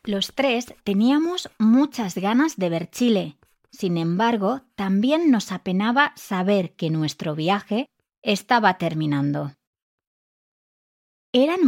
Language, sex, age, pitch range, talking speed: English, female, 20-39, 175-245 Hz, 105 wpm